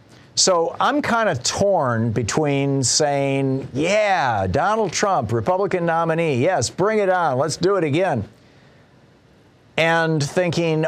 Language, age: English, 50-69